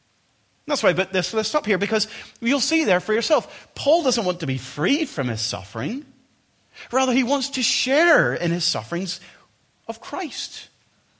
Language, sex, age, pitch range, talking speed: English, male, 30-49, 130-200 Hz, 170 wpm